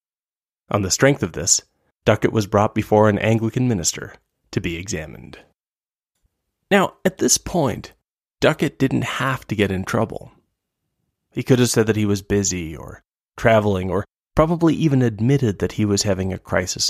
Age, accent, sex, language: 30-49, American, male, English